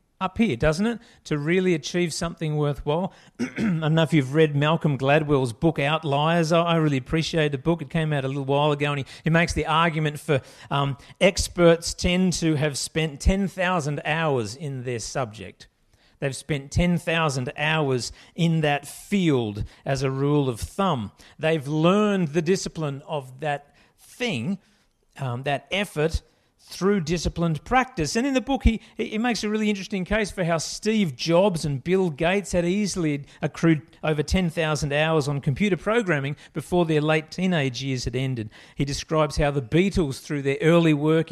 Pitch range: 145-180 Hz